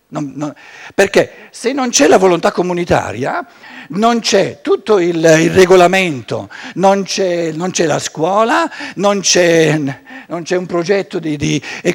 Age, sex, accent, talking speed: 60-79, male, native, 120 wpm